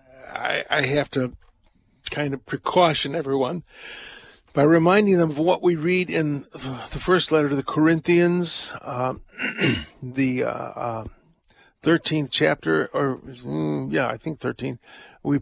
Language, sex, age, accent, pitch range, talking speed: English, male, 50-69, American, 135-175 Hz, 130 wpm